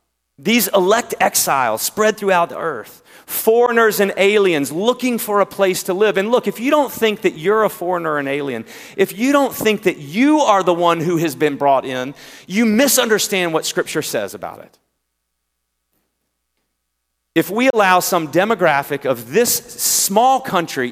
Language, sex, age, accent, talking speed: English, male, 40-59, American, 170 wpm